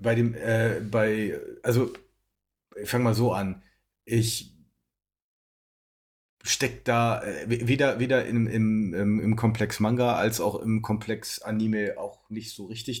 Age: 40-59